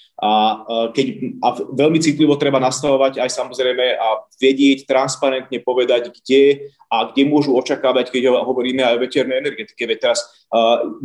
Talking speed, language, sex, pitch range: 140 wpm, Slovak, male, 115-145 Hz